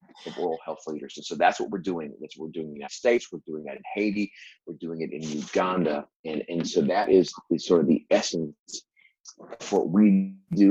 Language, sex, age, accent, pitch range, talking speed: English, male, 30-49, American, 80-110 Hz, 235 wpm